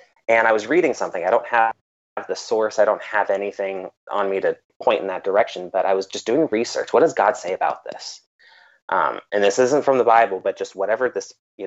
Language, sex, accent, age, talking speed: English, male, American, 30-49, 230 wpm